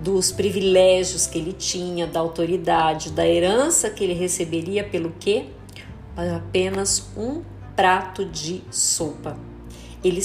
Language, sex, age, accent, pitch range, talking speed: Portuguese, female, 40-59, Brazilian, 170-230 Hz, 115 wpm